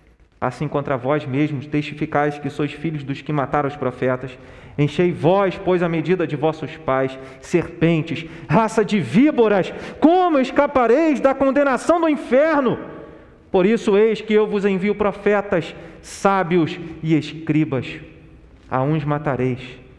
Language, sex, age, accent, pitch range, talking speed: Portuguese, male, 40-59, Brazilian, 135-175 Hz, 135 wpm